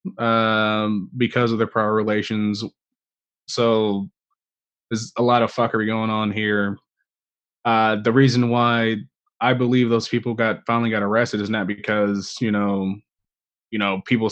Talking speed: 145 wpm